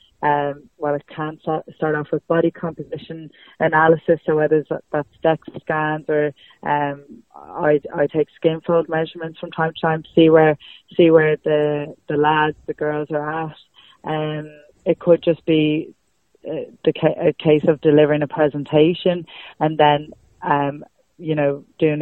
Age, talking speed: 20-39, 160 wpm